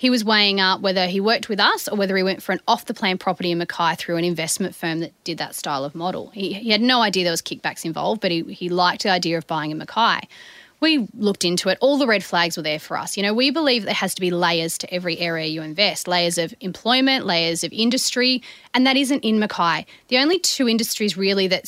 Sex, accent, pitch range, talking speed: female, Australian, 175-225 Hz, 250 wpm